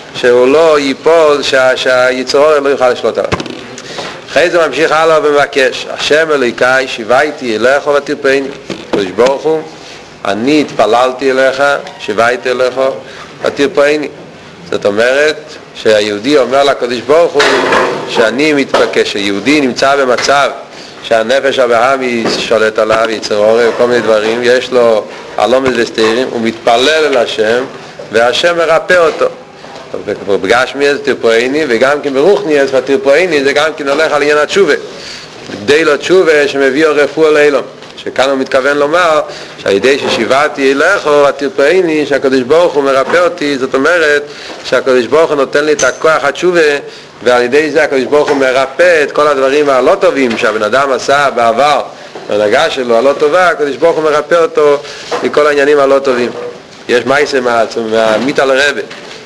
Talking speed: 120 wpm